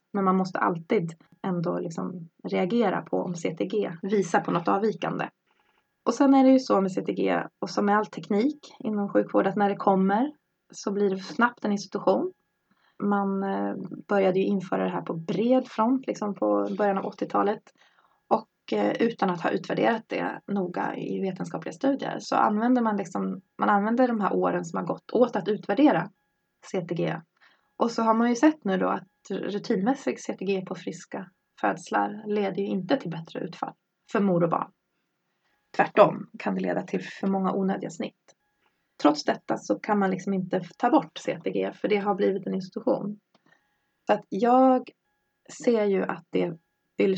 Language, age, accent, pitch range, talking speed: Swedish, 20-39, native, 185-225 Hz, 170 wpm